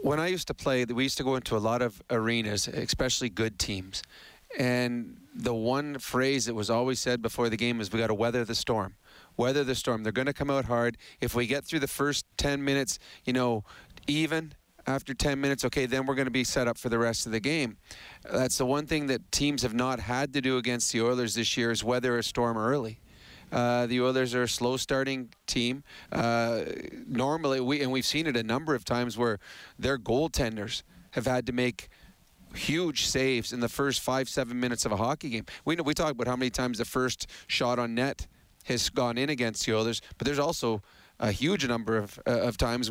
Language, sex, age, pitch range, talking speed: English, male, 40-59, 115-135 Hz, 220 wpm